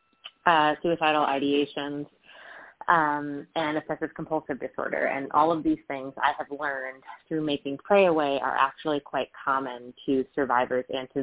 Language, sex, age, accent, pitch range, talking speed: English, female, 20-39, American, 135-170 Hz, 150 wpm